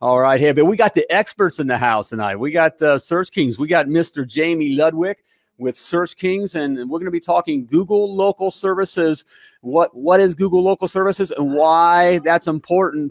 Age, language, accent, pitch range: 40-59, English, American, 135-175 Hz